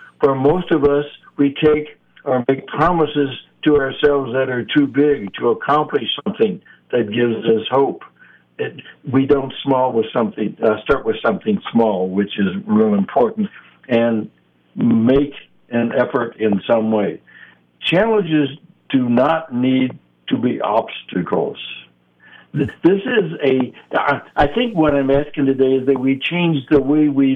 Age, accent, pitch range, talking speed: 60-79, American, 115-145 Hz, 150 wpm